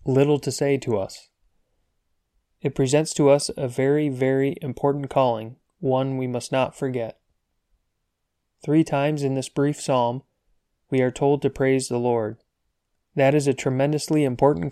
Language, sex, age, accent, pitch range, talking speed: English, male, 20-39, American, 120-140 Hz, 150 wpm